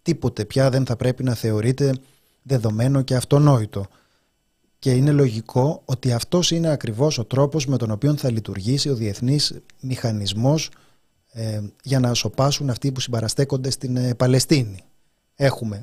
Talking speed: 140 wpm